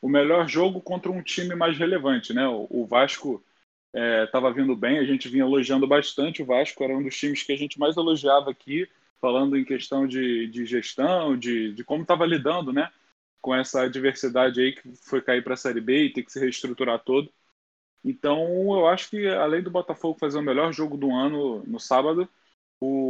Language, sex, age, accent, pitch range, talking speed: Portuguese, male, 10-29, Brazilian, 125-160 Hz, 200 wpm